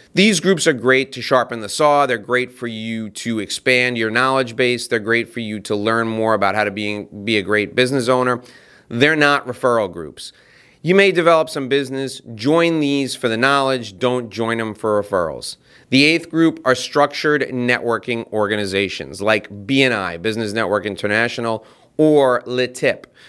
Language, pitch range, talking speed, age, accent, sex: English, 115-145 Hz, 170 wpm, 30-49, American, male